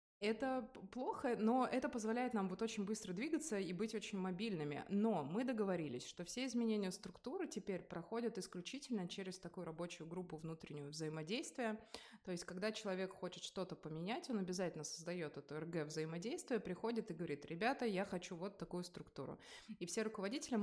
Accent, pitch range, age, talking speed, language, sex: native, 175-220 Hz, 20-39, 160 wpm, Russian, female